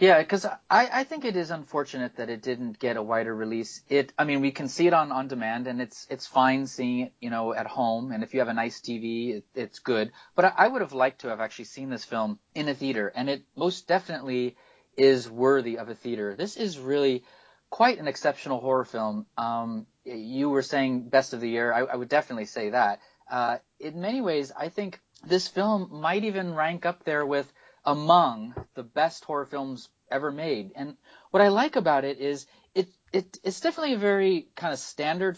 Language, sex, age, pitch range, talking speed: English, male, 30-49, 120-170 Hz, 215 wpm